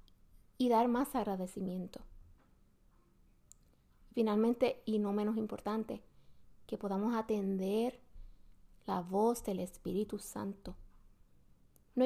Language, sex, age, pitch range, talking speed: Spanish, female, 30-49, 195-245 Hz, 90 wpm